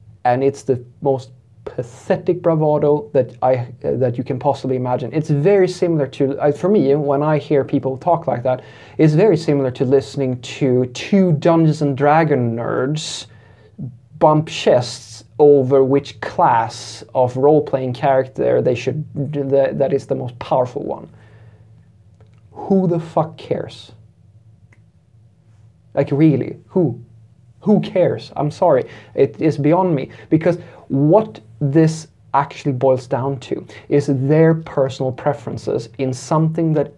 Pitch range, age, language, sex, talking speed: 125-155 Hz, 30-49, English, male, 140 wpm